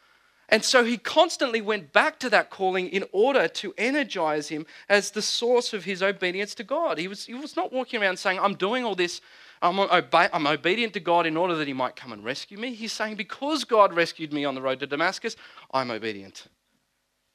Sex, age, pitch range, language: male, 40-59, 130-210 Hz, English